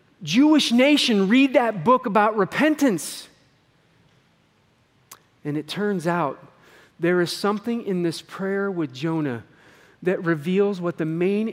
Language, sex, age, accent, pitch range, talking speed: English, male, 40-59, American, 155-215 Hz, 125 wpm